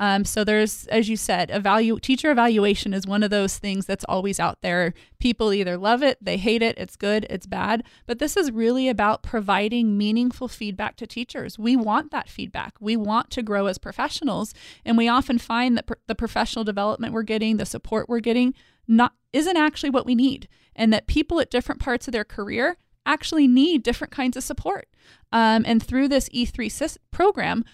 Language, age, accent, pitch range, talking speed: English, 20-39, American, 215-255 Hz, 195 wpm